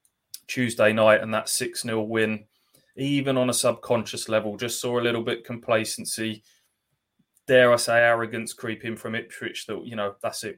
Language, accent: English, British